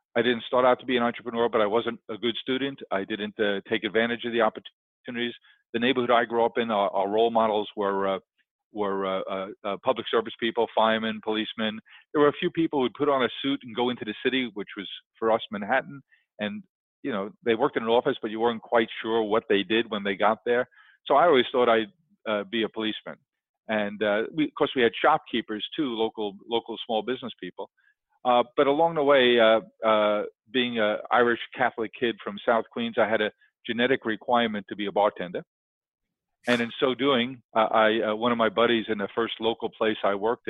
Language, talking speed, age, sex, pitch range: English, 220 wpm, 40-59, male, 110-125 Hz